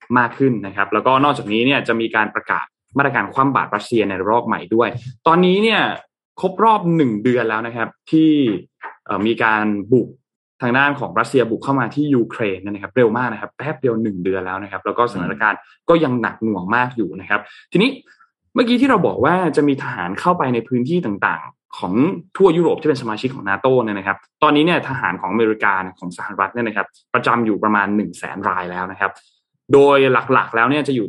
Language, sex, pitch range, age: Thai, male, 105-140 Hz, 20-39